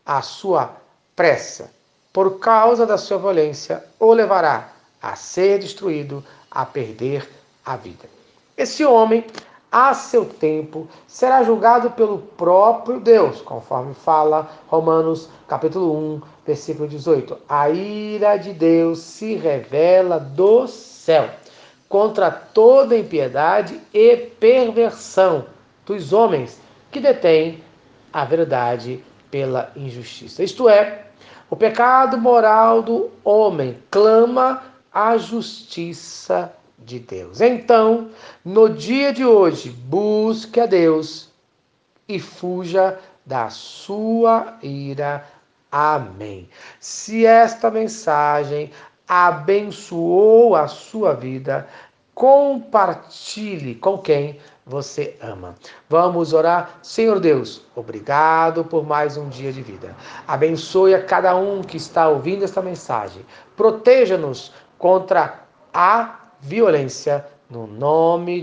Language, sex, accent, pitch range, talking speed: Portuguese, male, Brazilian, 150-225 Hz, 105 wpm